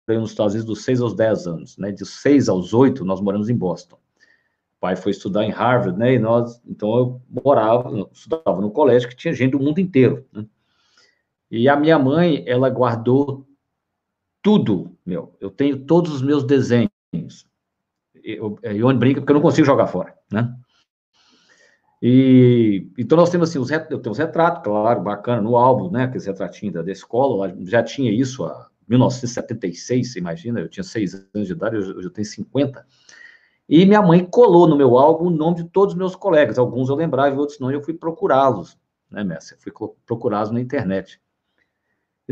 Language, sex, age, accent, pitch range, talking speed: Portuguese, male, 50-69, Brazilian, 110-155 Hz, 190 wpm